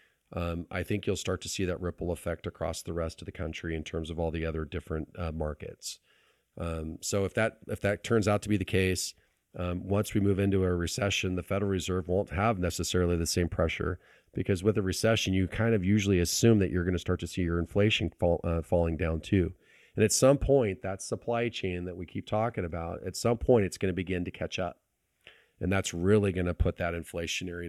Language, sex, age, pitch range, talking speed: English, male, 40-59, 85-105 Hz, 230 wpm